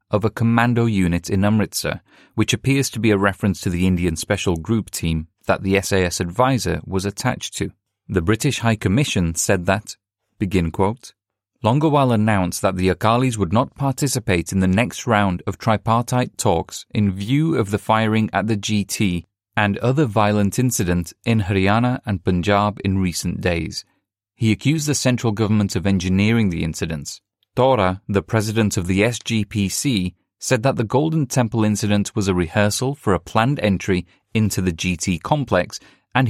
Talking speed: 165 wpm